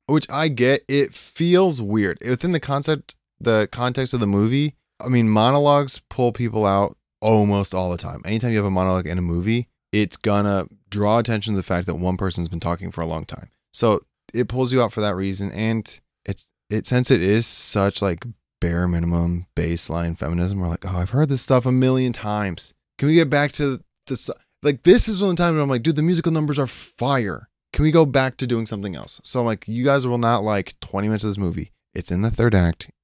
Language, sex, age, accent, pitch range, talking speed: English, male, 20-39, American, 90-125 Hz, 225 wpm